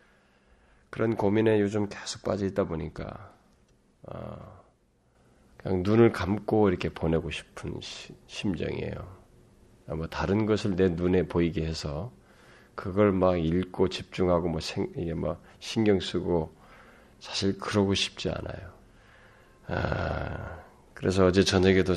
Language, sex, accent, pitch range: Korean, male, native, 80-100 Hz